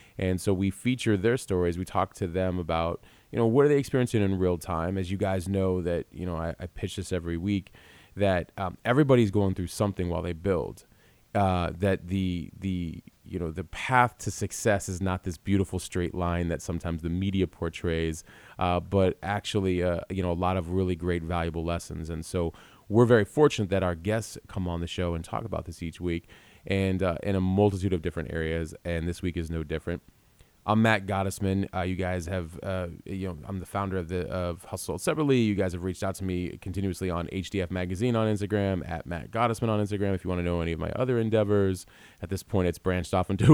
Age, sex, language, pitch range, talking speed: 30-49, male, English, 85-100 Hz, 225 wpm